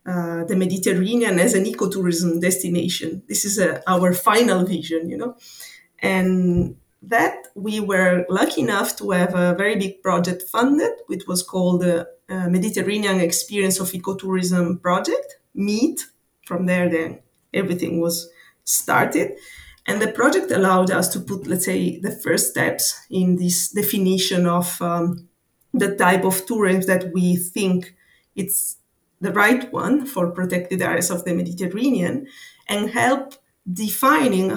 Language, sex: English, female